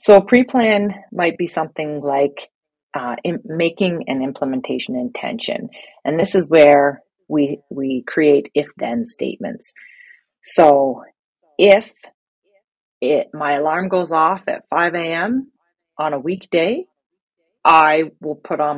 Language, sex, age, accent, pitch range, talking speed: English, female, 40-59, American, 145-200 Hz, 125 wpm